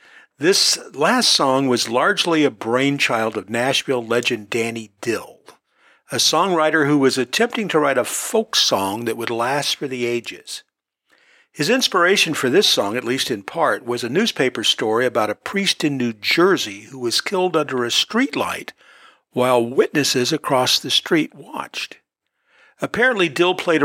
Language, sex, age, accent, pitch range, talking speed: English, male, 50-69, American, 125-160 Hz, 155 wpm